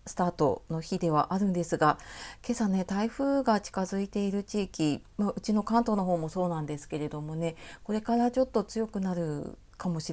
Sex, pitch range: female, 160-210 Hz